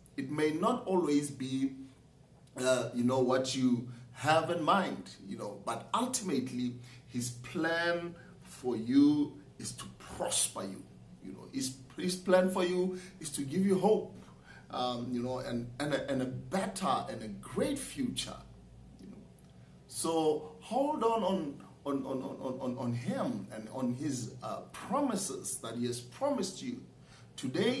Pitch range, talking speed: 130-195 Hz, 145 wpm